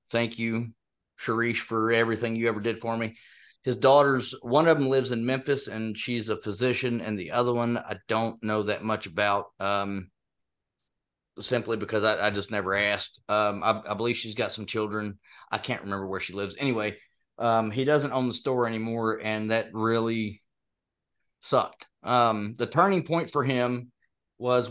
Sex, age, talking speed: male, 30-49, 175 wpm